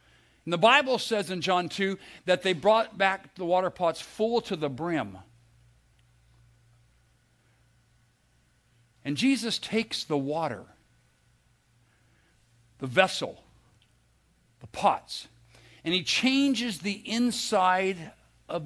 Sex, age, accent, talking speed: male, 60-79, American, 105 wpm